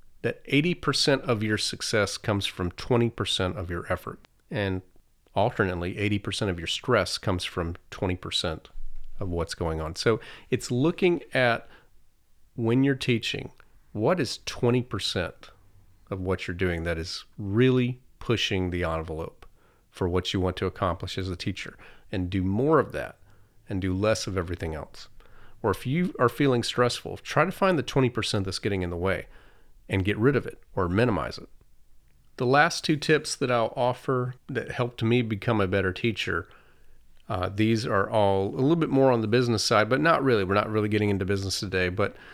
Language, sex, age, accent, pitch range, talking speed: English, male, 40-59, American, 95-125 Hz, 175 wpm